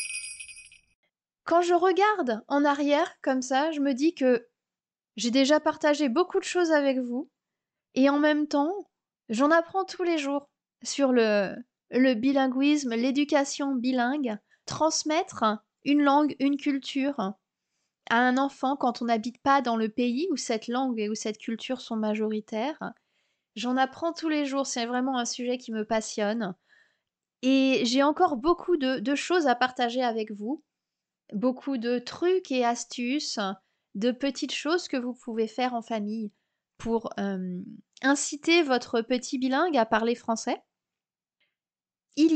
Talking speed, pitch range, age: 150 wpm, 230-290 Hz, 20-39